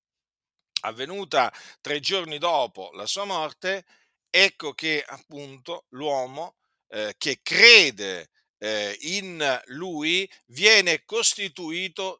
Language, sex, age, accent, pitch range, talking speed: Italian, male, 50-69, native, 150-195 Hz, 90 wpm